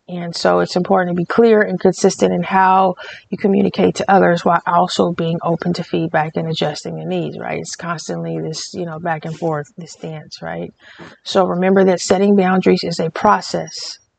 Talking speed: 190 wpm